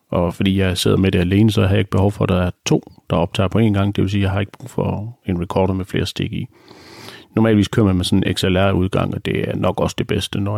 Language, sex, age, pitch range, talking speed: Danish, male, 40-59, 95-110 Hz, 295 wpm